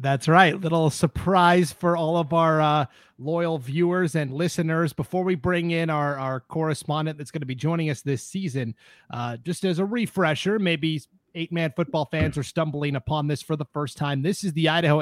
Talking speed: 195 wpm